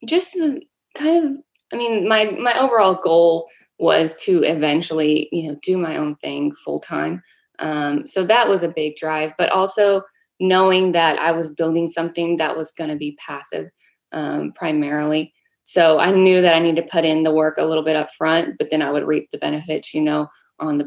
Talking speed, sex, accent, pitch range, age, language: 200 wpm, female, American, 155-195 Hz, 20-39, English